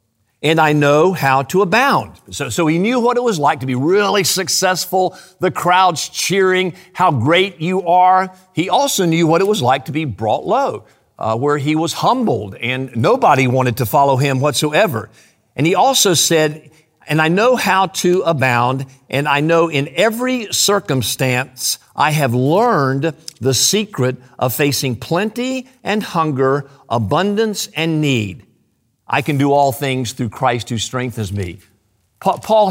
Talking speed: 160 wpm